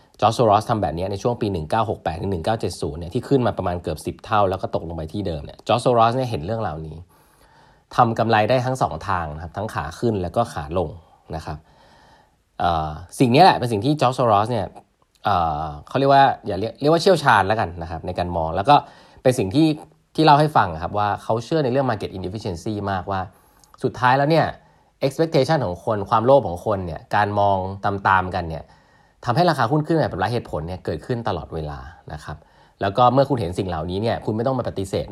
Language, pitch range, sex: Thai, 85-120 Hz, male